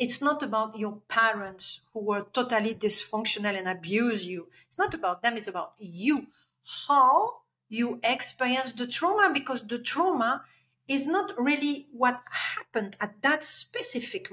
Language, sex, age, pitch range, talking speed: English, female, 50-69, 210-265 Hz, 145 wpm